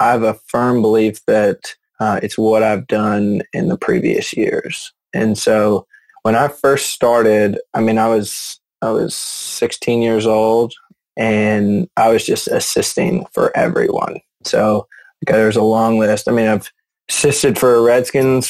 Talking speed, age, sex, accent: 160 wpm, 20-39, male, American